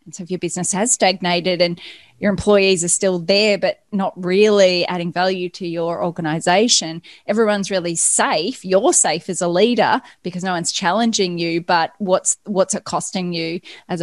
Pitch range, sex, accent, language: 180-225 Hz, female, Australian, English